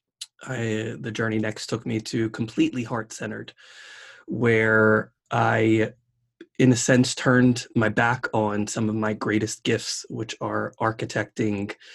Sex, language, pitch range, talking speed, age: male, English, 110-120 Hz, 125 wpm, 20-39